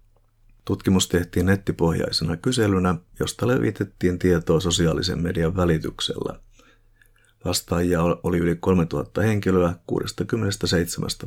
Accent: native